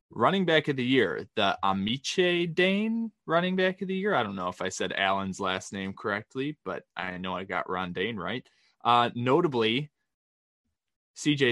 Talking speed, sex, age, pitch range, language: 175 wpm, male, 20-39, 100-125 Hz, English